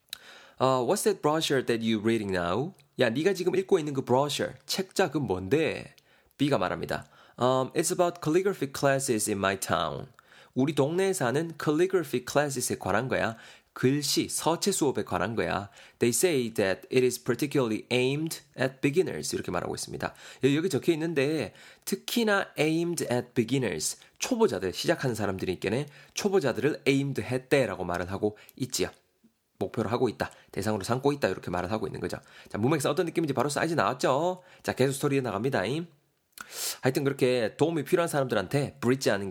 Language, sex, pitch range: Korean, male, 120-175 Hz